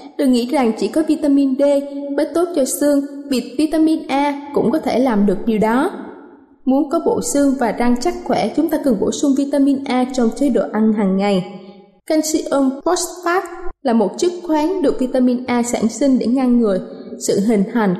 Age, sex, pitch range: 20-39, female, 240-310 Hz